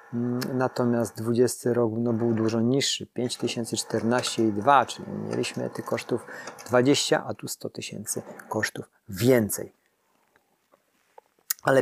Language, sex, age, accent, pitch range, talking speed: Polish, male, 40-59, native, 115-135 Hz, 100 wpm